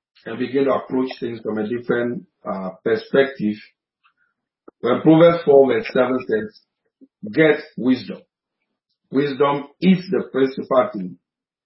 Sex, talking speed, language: male, 120 wpm, English